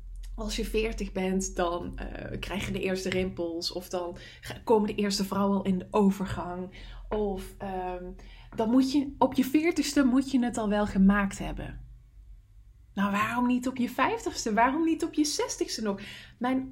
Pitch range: 195-265 Hz